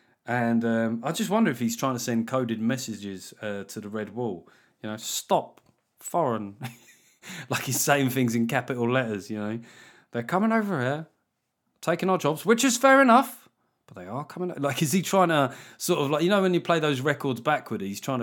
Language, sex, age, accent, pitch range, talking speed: English, male, 30-49, British, 115-155 Hz, 205 wpm